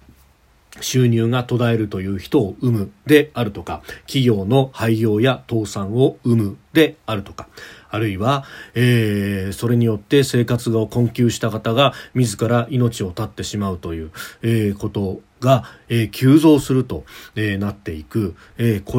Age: 40-59